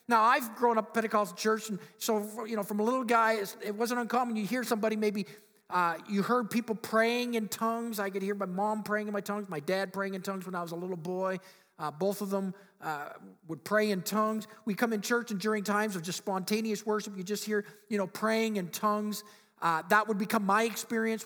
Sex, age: male, 50-69